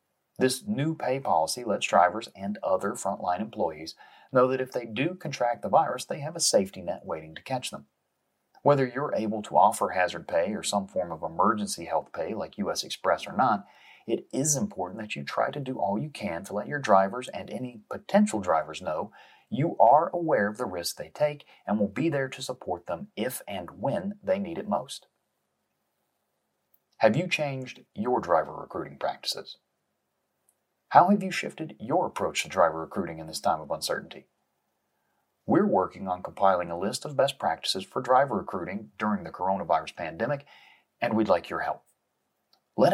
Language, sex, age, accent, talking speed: English, male, 30-49, American, 185 wpm